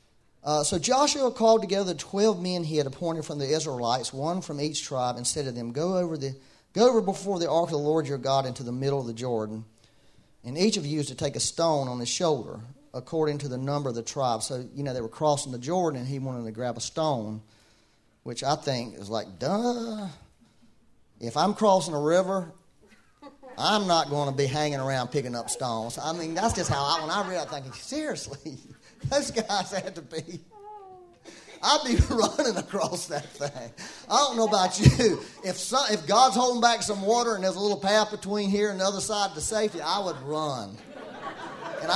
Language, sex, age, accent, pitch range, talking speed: English, male, 40-59, American, 130-200 Hz, 215 wpm